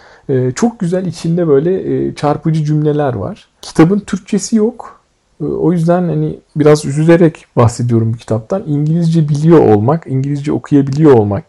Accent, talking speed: native, 125 wpm